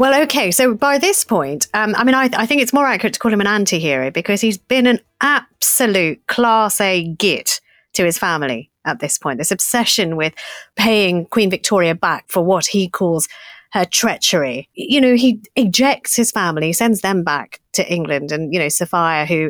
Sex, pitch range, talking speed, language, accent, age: female, 170-235 Hz, 195 wpm, English, British, 30-49